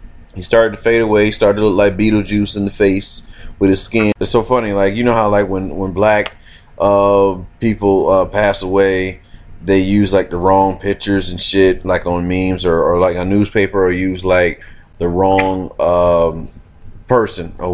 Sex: male